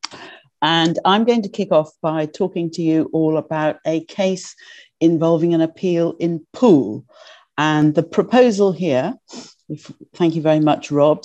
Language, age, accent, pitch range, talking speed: English, 50-69, British, 145-175 Hz, 150 wpm